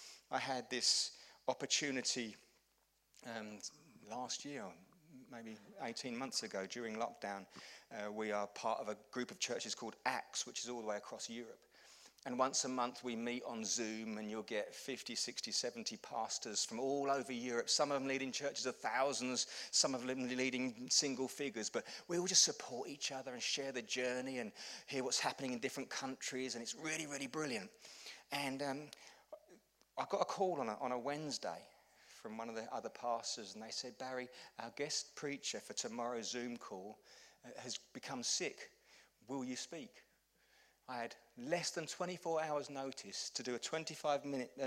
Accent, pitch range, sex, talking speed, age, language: British, 120-150 Hz, male, 175 wpm, 30-49, English